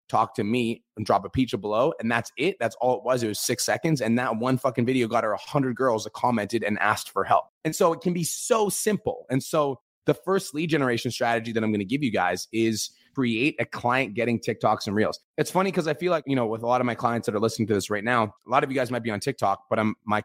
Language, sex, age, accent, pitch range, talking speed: English, male, 30-49, American, 115-145 Hz, 280 wpm